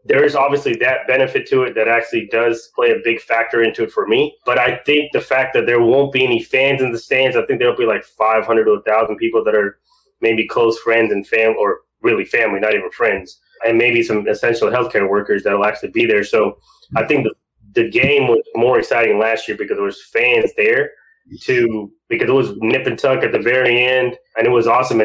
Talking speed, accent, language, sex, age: 230 wpm, American, English, male, 20-39